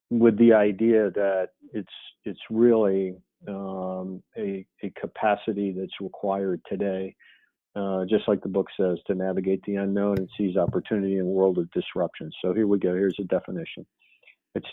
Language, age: English, 50-69